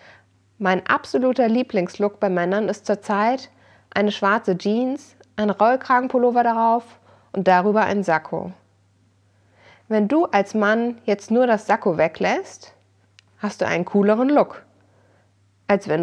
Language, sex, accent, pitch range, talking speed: German, female, German, 155-225 Hz, 125 wpm